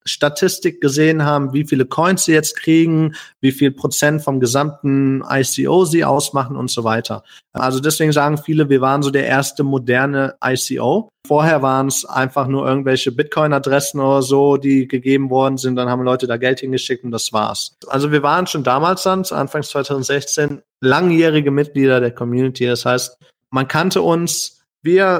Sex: male